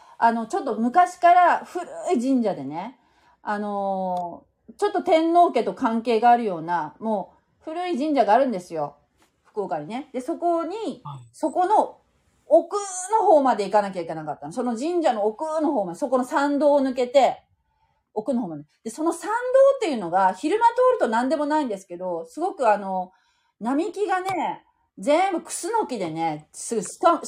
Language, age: Japanese, 30-49